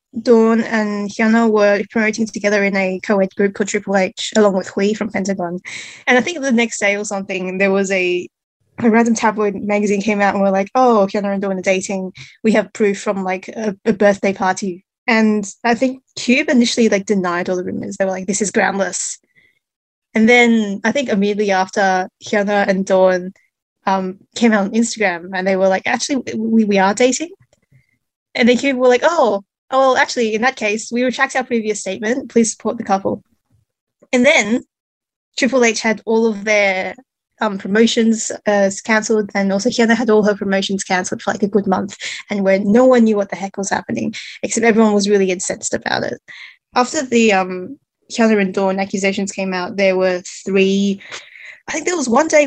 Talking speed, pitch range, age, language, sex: 195 wpm, 195-230 Hz, 20-39, English, female